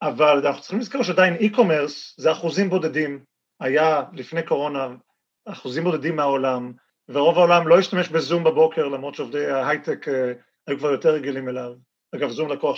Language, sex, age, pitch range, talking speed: Hebrew, male, 40-59, 140-200 Hz, 150 wpm